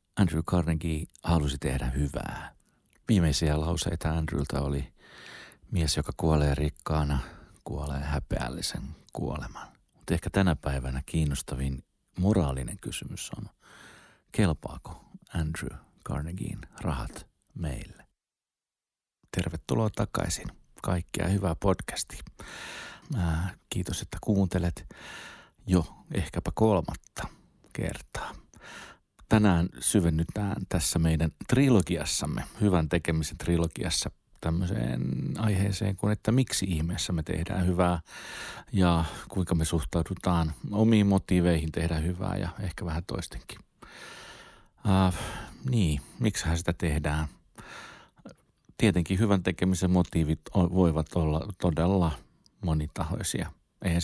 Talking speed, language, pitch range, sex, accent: 90 wpm, Finnish, 80-95 Hz, male, native